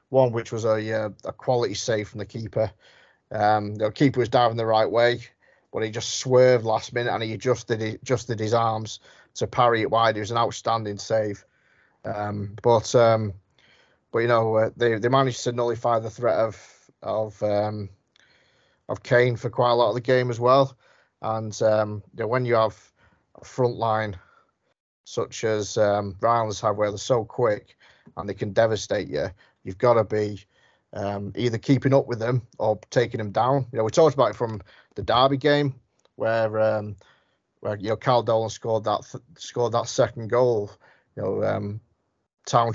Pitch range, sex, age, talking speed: 110-125 Hz, male, 30-49, 190 wpm